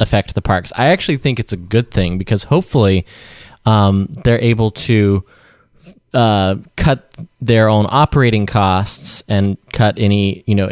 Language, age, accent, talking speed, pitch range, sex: English, 20-39, American, 150 wpm, 100-120 Hz, male